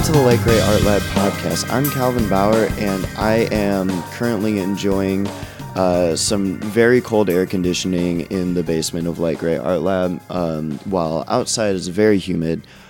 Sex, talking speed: male, 165 wpm